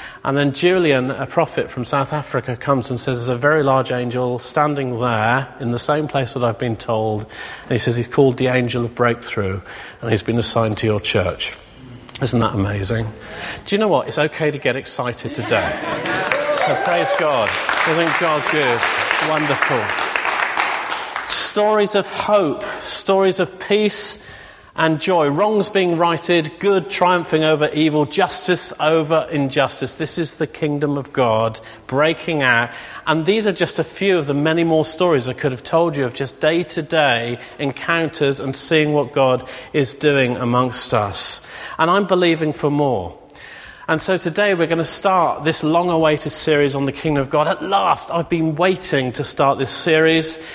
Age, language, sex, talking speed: 40-59, English, male, 175 wpm